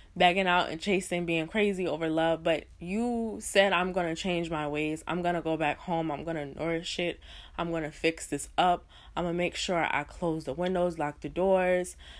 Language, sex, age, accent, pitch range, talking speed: English, female, 20-39, American, 145-180 Hz, 225 wpm